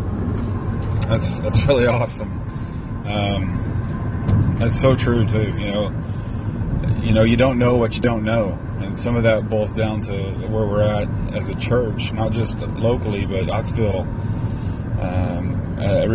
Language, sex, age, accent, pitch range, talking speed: English, male, 30-49, American, 95-115 Hz, 150 wpm